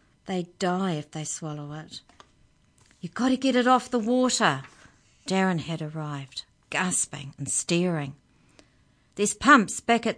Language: English